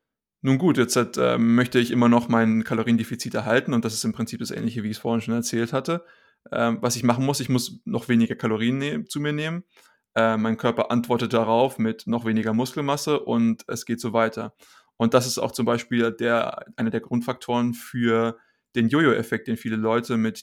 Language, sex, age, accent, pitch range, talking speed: German, male, 20-39, German, 115-130 Hz, 200 wpm